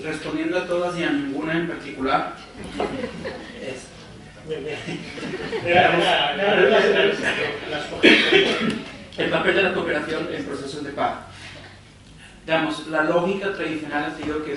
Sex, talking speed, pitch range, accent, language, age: male, 105 wpm, 125-150 Hz, Mexican, Spanish, 40-59